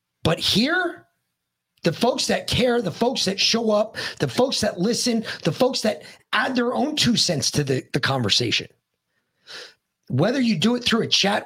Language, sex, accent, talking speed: English, male, American, 180 wpm